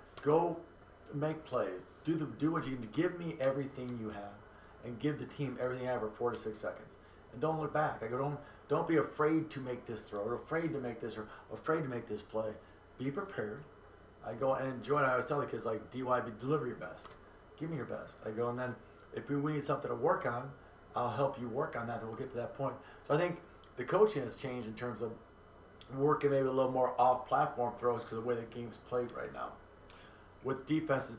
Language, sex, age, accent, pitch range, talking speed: English, male, 30-49, American, 115-140 Hz, 250 wpm